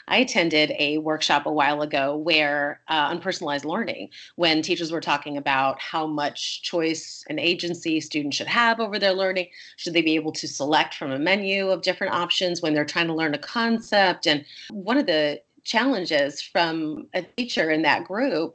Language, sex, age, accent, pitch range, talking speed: English, female, 30-49, American, 165-235 Hz, 185 wpm